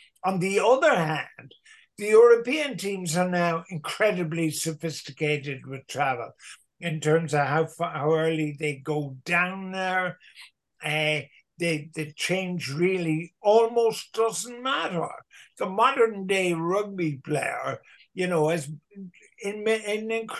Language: English